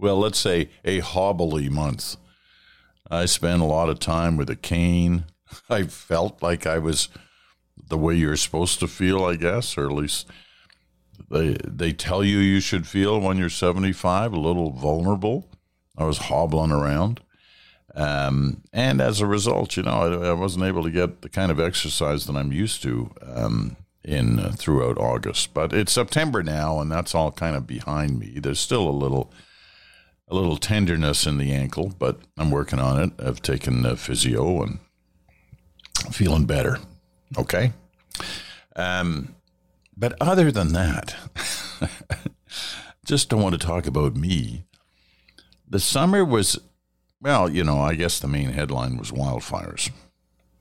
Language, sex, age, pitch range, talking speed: English, male, 50-69, 70-90 Hz, 160 wpm